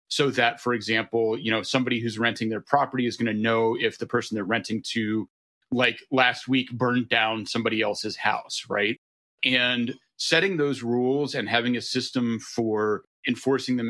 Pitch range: 115-140 Hz